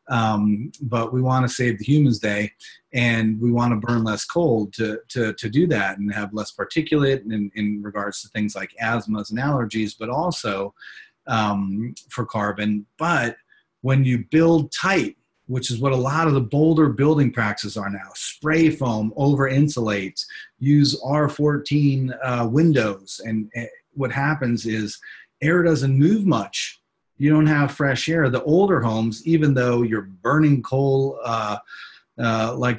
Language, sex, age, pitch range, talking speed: English, male, 30-49, 110-140 Hz, 160 wpm